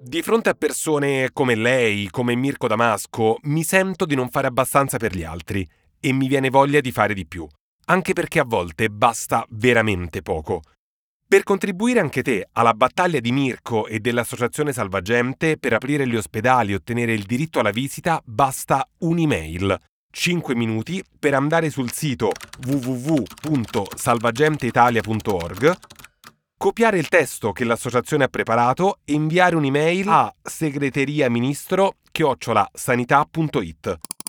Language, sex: Italian, male